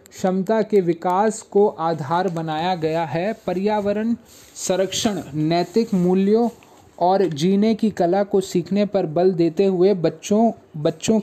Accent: native